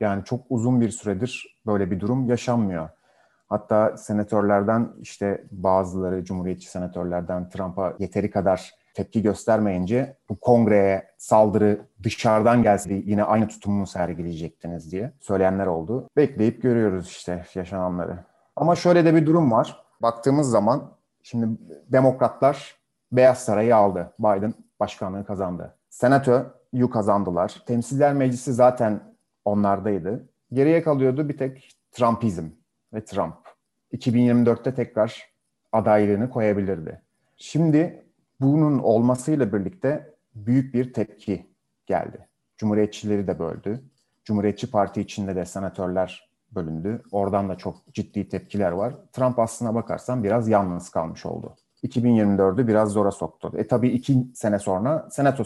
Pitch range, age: 95-125 Hz, 30-49